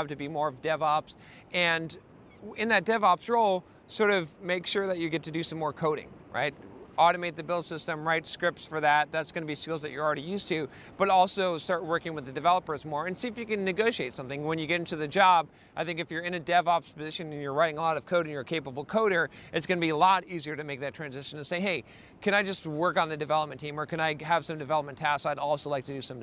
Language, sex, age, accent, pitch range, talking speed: English, male, 40-59, American, 150-185 Hz, 270 wpm